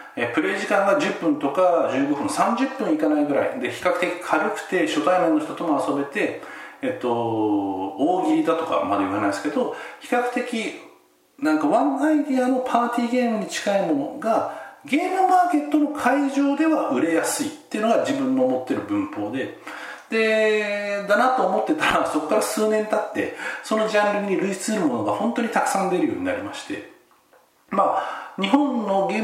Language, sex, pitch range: Japanese, male, 170-270 Hz